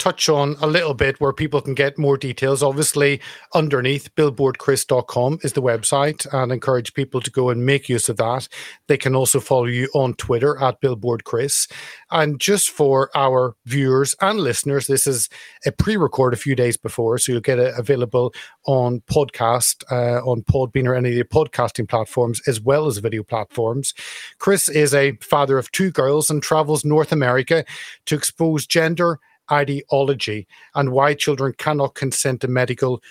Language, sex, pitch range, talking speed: English, male, 125-145 Hz, 170 wpm